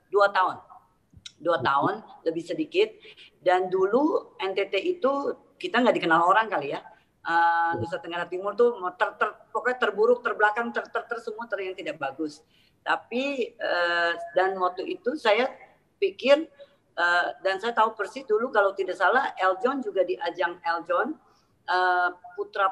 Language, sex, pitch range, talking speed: Indonesian, female, 170-240 Hz, 150 wpm